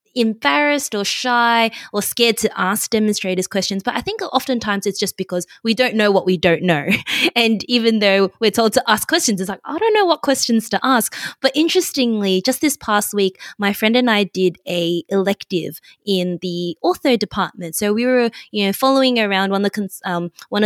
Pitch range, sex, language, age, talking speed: 185-235 Hz, female, English, 20-39, 190 wpm